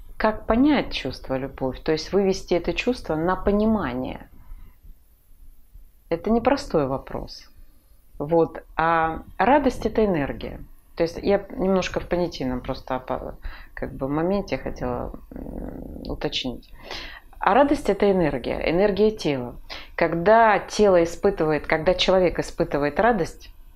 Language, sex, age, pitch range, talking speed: Russian, female, 30-49, 135-180 Hz, 110 wpm